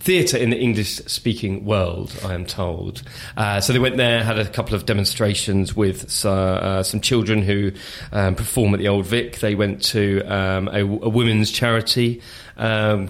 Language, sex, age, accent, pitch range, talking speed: English, male, 20-39, British, 95-115 Hz, 180 wpm